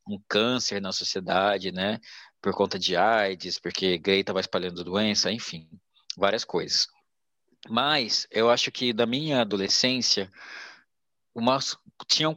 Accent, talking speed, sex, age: Brazilian, 125 wpm, male, 20-39